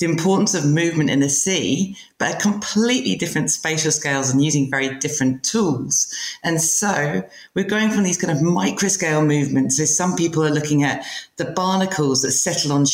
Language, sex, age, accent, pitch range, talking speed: English, female, 40-59, British, 140-190 Hz, 185 wpm